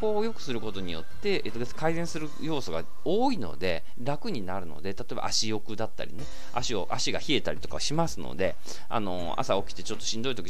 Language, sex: Japanese, male